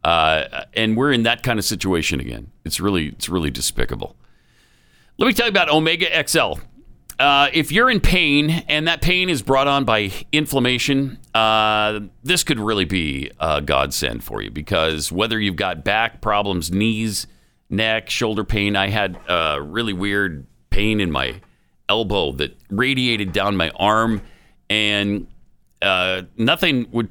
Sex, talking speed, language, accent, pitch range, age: male, 155 wpm, English, American, 95-135 Hz, 50-69